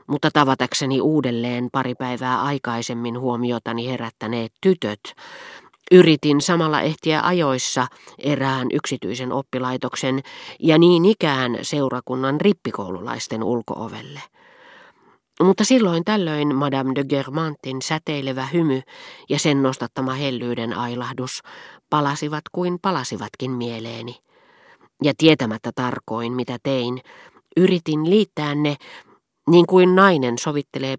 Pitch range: 125-160 Hz